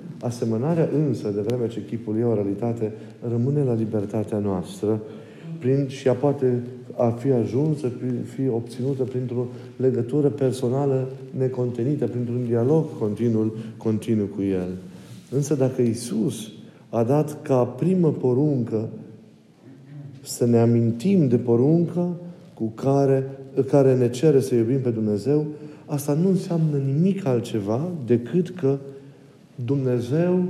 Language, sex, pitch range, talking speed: Romanian, male, 115-145 Hz, 125 wpm